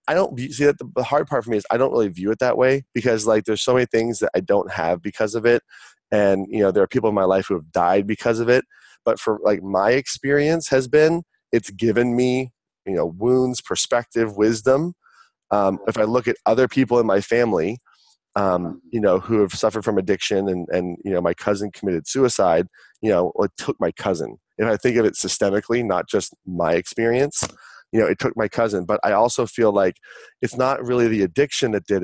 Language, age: English, 30-49